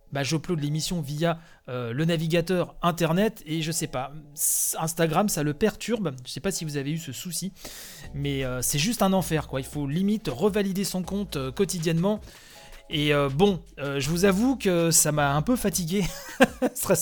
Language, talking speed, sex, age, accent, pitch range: French, 190 wpm, male, 30-49, French, 150-190 Hz